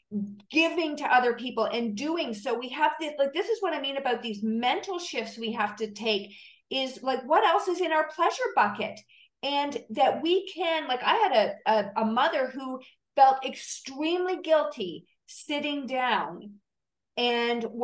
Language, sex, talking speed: English, female, 170 wpm